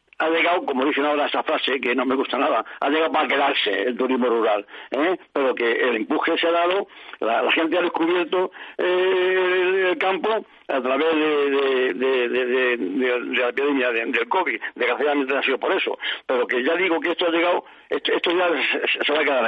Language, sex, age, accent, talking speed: Spanish, male, 60-79, Spanish, 220 wpm